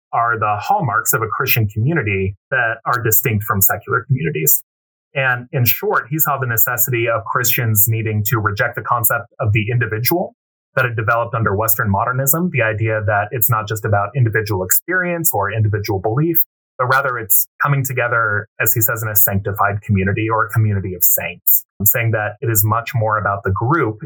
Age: 30-49